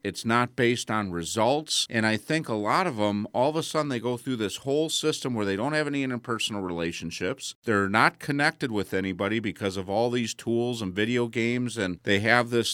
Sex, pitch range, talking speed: male, 105-125 Hz, 215 wpm